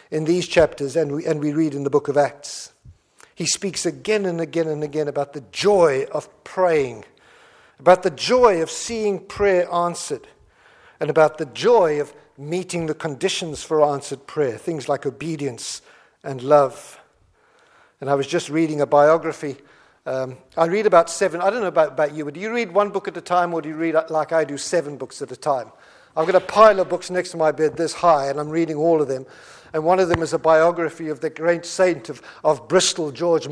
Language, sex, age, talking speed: English, male, 50-69, 215 wpm